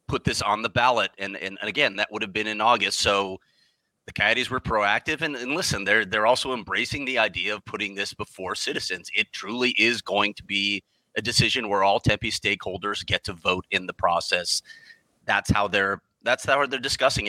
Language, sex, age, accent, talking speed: English, male, 30-49, American, 200 wpm